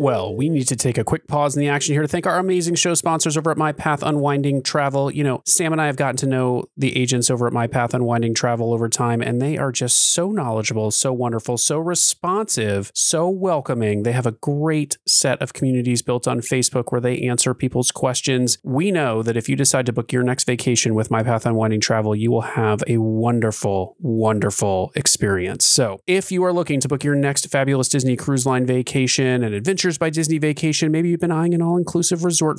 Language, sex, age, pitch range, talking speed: English, male, 30-49, 115-160 Hz, 220 wpm